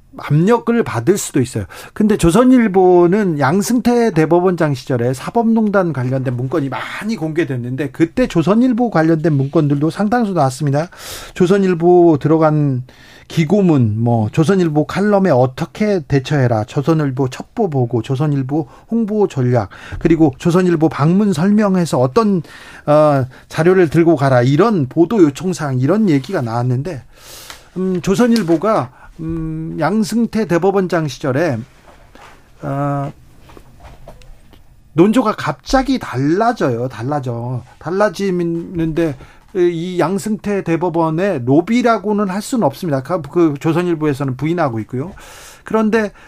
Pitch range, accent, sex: 140-200 Hz, native, male